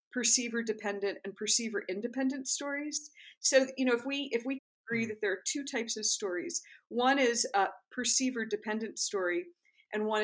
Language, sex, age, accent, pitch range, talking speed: English, female, 50-69, American, 205-265 Hz, 170 wpm